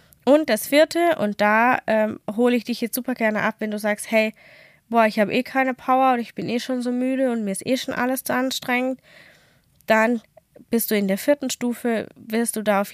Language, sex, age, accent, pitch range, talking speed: German, female, 10-29, German, 195-245 Hz, 225 wpm